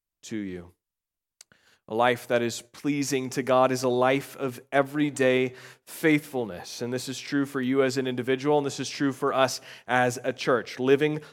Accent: American